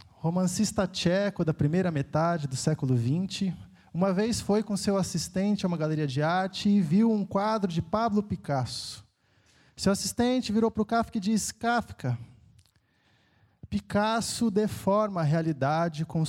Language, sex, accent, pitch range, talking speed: Portuguese, male, Brazilian, 120-190 Hz, 145 wpm